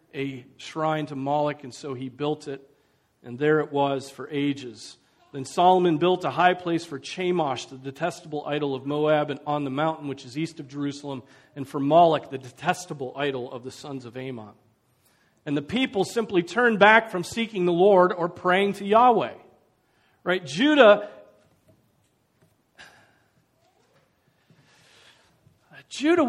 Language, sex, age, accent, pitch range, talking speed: English, male, 40-59, American, 150-245 Hz, 150 wpm